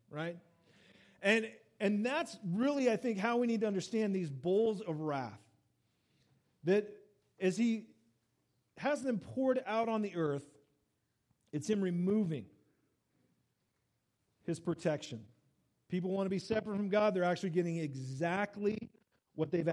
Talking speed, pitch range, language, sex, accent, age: 135 wpm, 155-215 Hz, English, male, American, 40-59